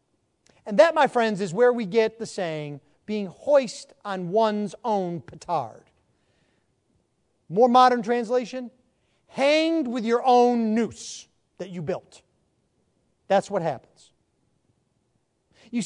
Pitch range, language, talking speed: 180-250 Hz, English, 115 wpm